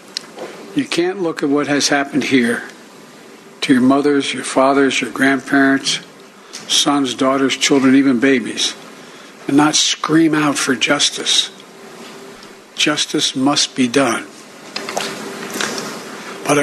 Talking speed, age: 110 wpm, 60-79